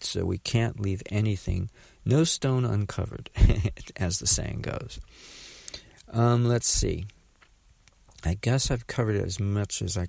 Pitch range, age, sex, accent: 90-105 Hz, 50-69, male, American